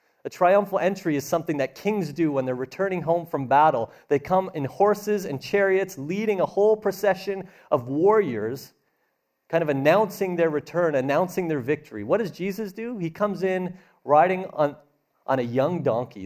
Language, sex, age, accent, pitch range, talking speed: English, male, 40-59, American, 120-180 Hz, 175 wpm